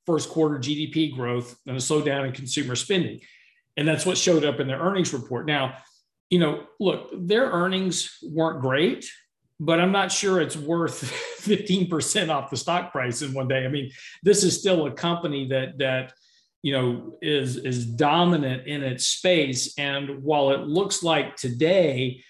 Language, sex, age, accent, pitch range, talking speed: English, male, 50-69, American, 130-170 Hz, 170 wpm